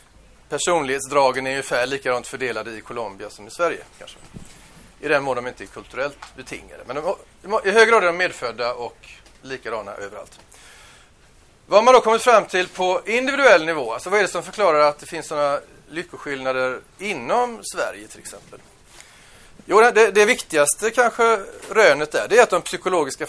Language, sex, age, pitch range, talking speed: Swedish, male, 30-49, 130-185 Hz, 185 wpm